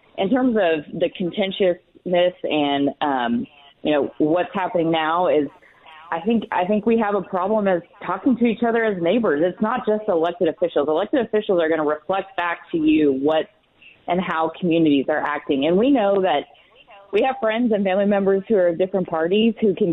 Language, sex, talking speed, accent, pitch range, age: English, female, 195 wpm, American, 155-200 Hz, 20-39